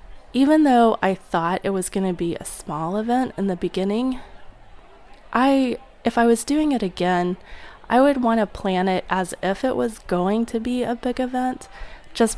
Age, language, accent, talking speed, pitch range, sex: 20-39, English, American, 180 wpm, 180-225 Hz, female